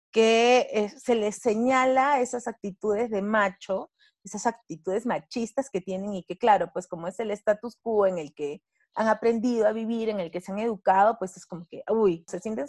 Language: Spanish